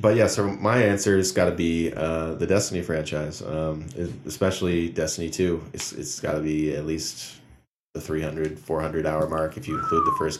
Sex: male